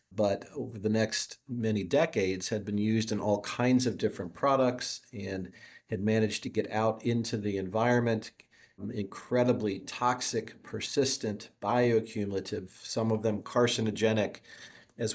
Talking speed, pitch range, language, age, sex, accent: 130 wpm, 105-120 Hz, English, 50-69, male, American